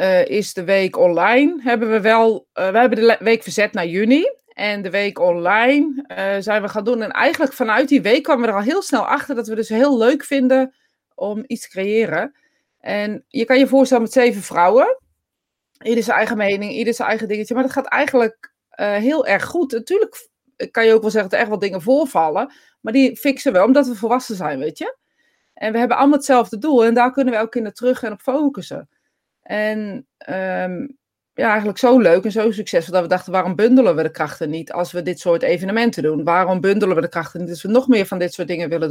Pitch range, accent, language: 200-265 Hz, Dutch, Dutch